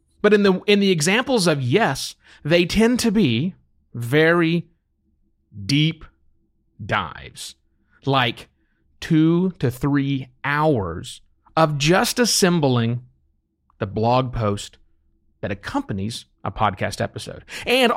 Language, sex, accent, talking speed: English, male, American, 105 wpm